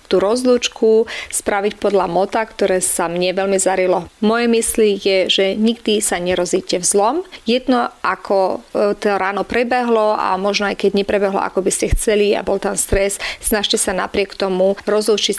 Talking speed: 155 wpm